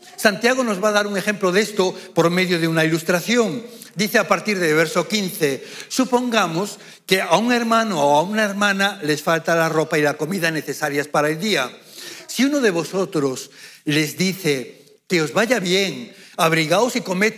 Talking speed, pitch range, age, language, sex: 185 wpm, 165-220 Hz, 60-79, Spanish, male